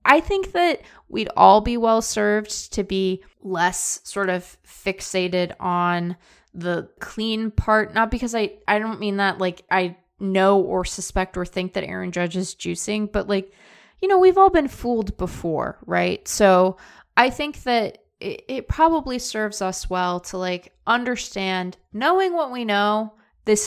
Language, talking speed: English, 160 wpm